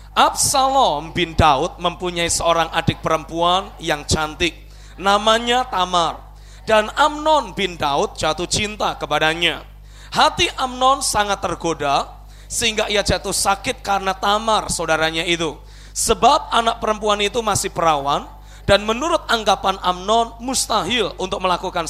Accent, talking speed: native, 120 wpm